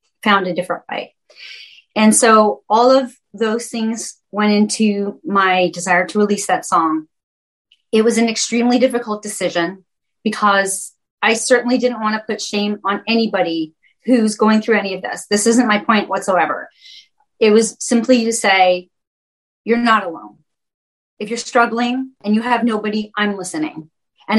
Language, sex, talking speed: English, female, 155 wpm